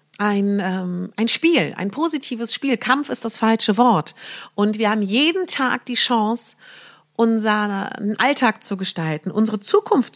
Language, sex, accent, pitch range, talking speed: German, female, German, 200-260 Hz, 150 wpm